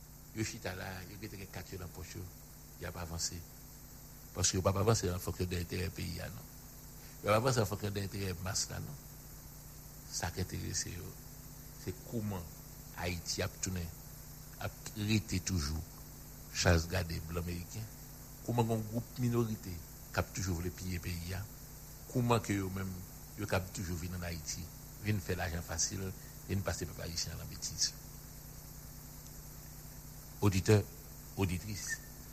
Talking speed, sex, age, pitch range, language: 115 wpm, male, 60-79, 95-135 Hz, English